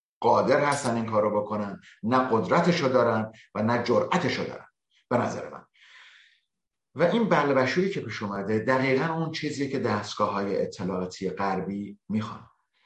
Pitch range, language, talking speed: 105-150 Hz, Persian, 150 wpm